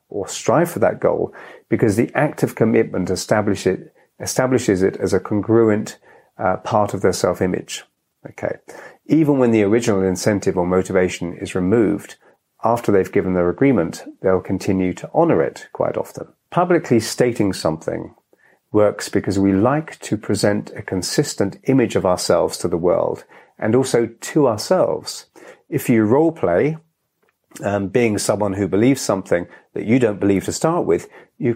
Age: 40-59